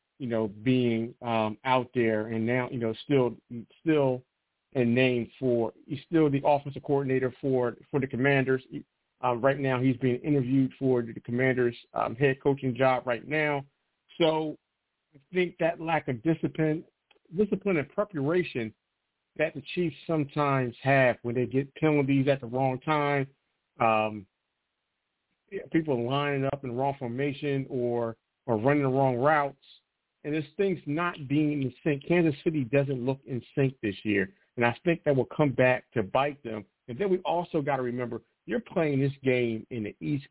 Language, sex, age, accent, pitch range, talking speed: English, male, 40-59, American, 125-145 Hz, 170 wpm